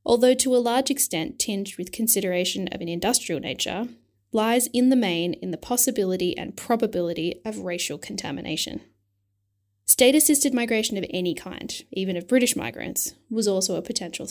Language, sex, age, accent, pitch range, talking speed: English, female, 10-29, Australian, 170-225 Hz, 160 wpm